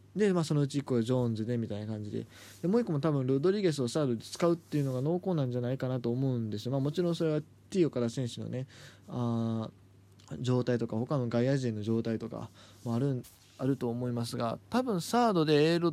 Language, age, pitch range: Japanese, 20-39, 105-140 Hz